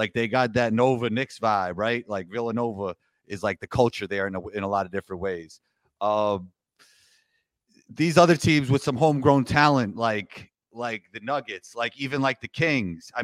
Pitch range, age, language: 120-150 Hz, 30-49, English